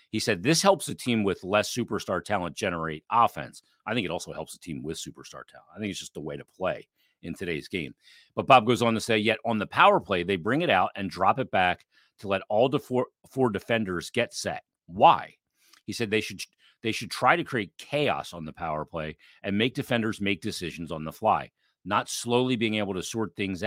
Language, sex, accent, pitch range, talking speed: English, male, American, 90-115 Hz, 230 wpm